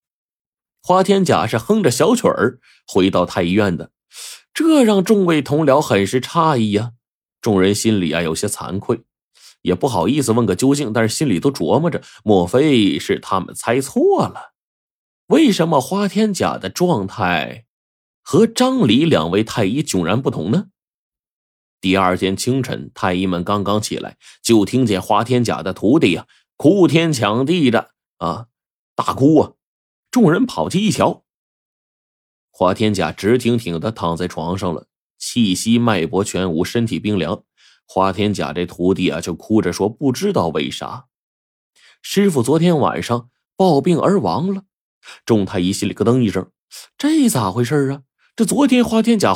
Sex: male